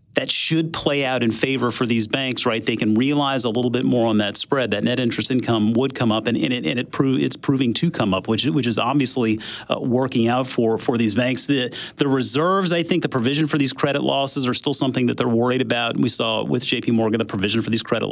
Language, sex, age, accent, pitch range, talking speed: English, male, 40-59, American, 110-145 Hz, 225 wpm